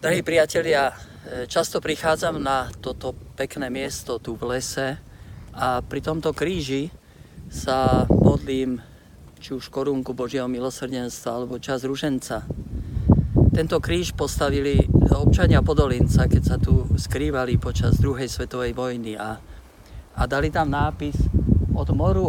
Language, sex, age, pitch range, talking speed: Slovak, male, 50-69, 115-145 Hz, 120 wpm